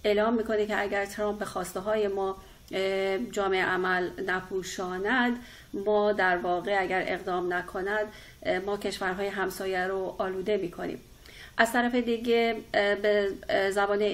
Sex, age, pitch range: female, 40-59, 190-215 Hz